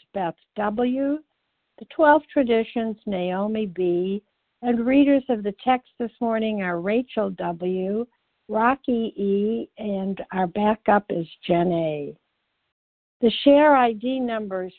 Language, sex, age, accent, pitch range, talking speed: English, female, 60-79, American, 185-250 Hz, 120 wpm